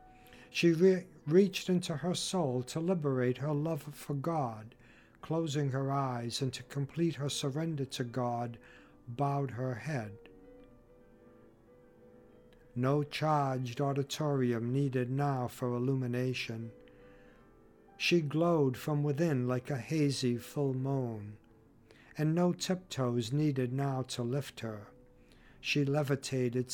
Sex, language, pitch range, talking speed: male, English, 125-155 Hz, 110 wpm